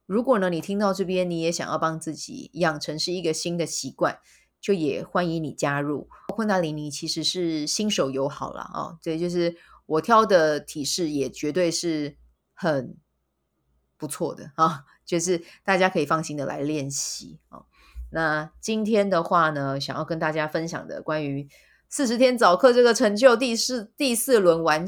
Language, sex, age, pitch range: Chinese, female, 20-39, 145-195 Hz